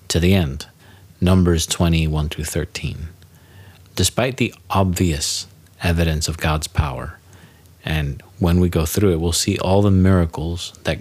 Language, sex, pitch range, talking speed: English, male, 80-95 Hz, 145 wpm